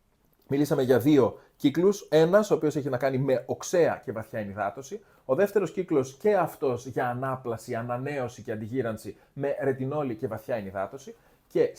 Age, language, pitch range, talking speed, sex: 30-49, Greek, 120-160 Hz, 160 wpm, male